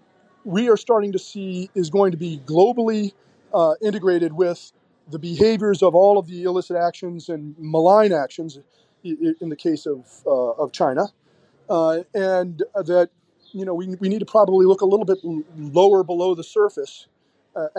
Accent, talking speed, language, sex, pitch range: American, 170 wpm, English, male, 160-190 Hz